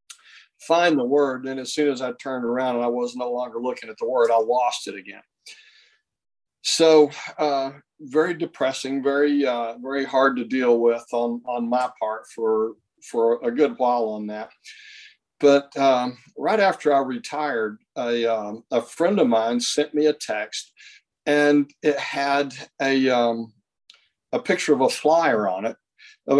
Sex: male